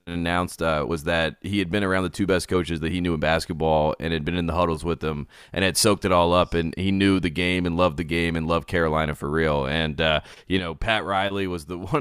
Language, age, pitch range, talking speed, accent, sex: English, 30-49, 85-100 Hz, 270 wpm, American, male